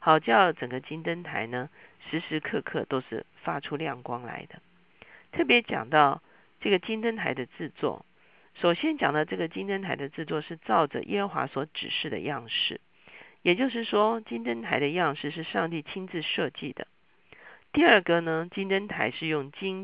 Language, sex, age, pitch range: Chinese, female, 50-69, 145-190 Hz